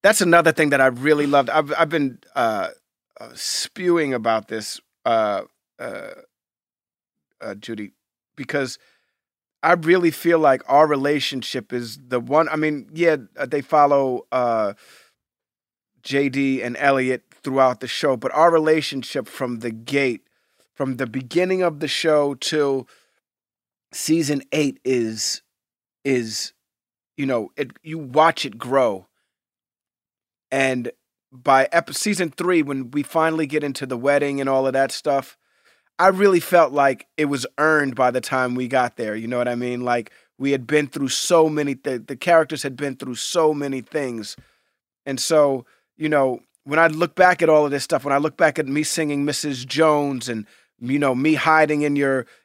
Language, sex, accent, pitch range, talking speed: English, male, American, 130-155 Hz, 165 wpm